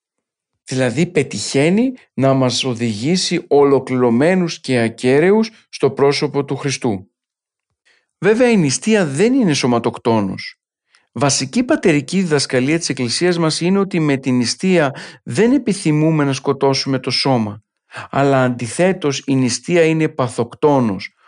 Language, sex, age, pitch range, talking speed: Greek, male, 50-69, 130-160 Hz, 115 wpm